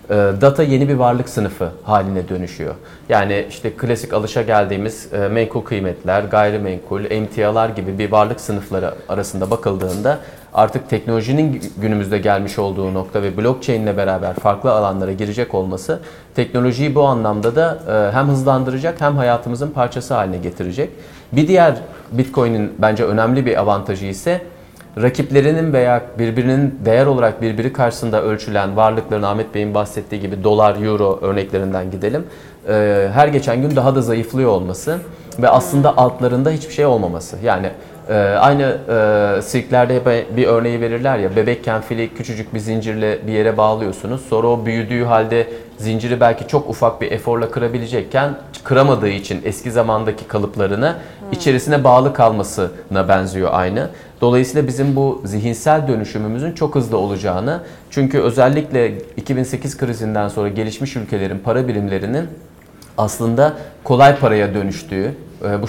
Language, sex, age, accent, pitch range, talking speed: Turkish, male, 30-49, native, 105-130 Hz, 130 wpm